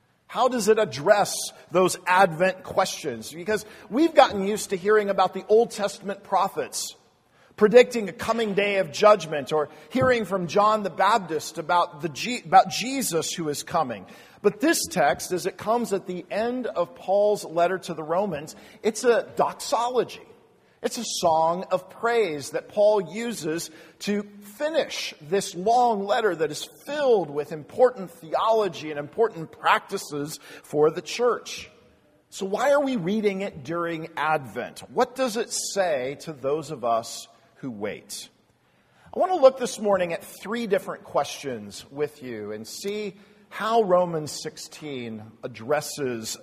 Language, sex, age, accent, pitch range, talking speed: English, male, 50-69, American, 155-220 Hz, 150 wpm